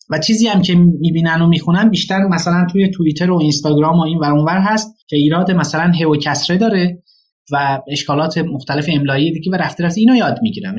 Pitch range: 150-200 Hz